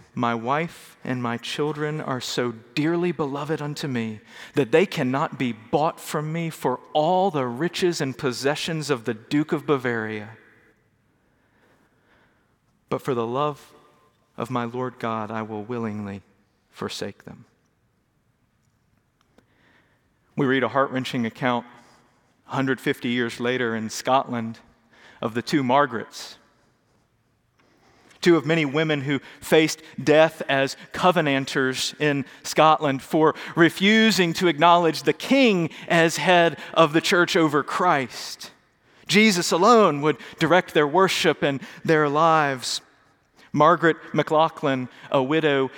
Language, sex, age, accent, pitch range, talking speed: English, male, 40-59, American, 120-160 Hz, 120 wpm